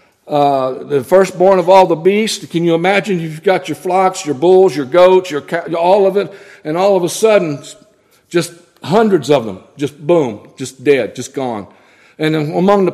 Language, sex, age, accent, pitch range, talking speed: English, male, 60-79, American, 170-200 Hz, 185 wpm